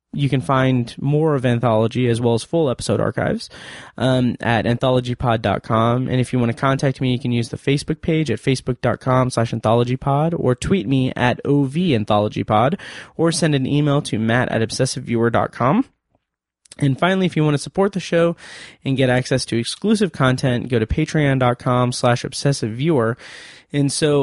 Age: 20-39